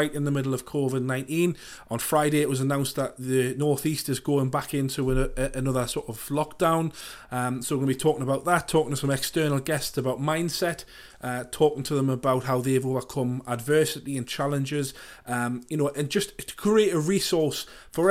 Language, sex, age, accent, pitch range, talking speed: English, male, 30-49, British, 130-150 Hz, 200 wpm